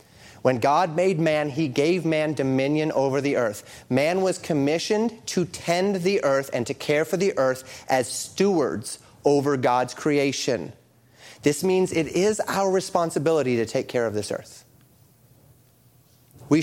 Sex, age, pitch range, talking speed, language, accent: male, 30-49, 125-165 Hz, 150 wpm, English, American